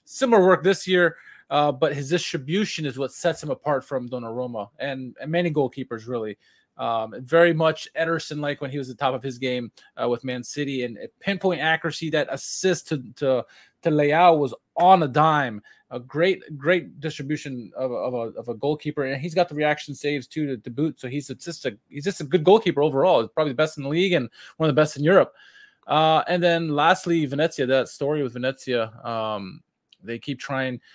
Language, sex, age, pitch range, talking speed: English, male, 20-39, 130-160 Hz, 210 wpm